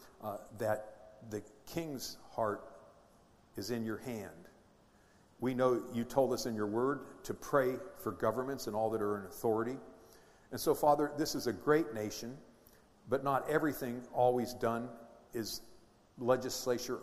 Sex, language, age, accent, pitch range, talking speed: male, English, 50-69, American, 110-135 Hz, 150 wpm